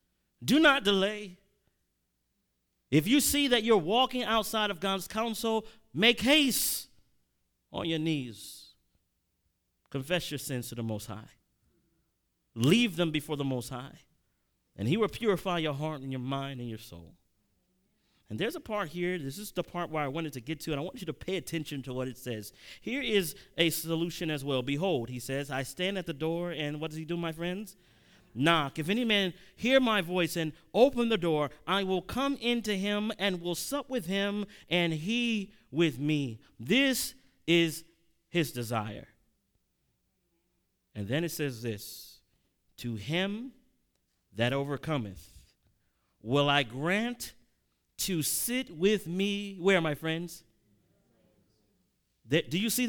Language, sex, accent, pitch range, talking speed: English, male, American, 140-210 Hz, 160 wpm